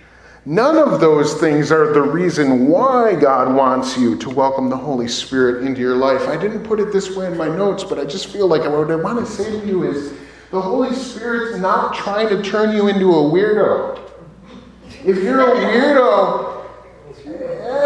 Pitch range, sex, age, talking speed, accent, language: 160-255 Hz, male, 30-49, 190 wpm, American, English